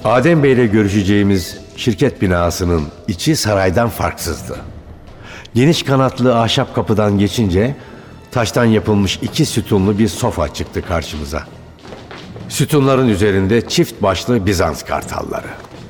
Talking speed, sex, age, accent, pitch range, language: 100 wpm, male, 60-79, native, 95-130 Hz, Turkish